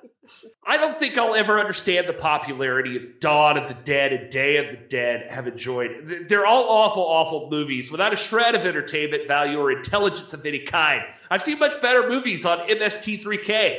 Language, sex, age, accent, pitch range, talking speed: English, male, 30-49, American, 150-215 Hz, 185 wpm